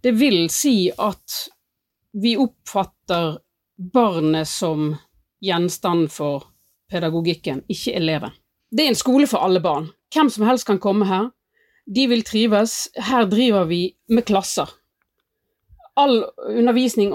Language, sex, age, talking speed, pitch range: English, female, 30-49, 135 wpm, 180-240 Hz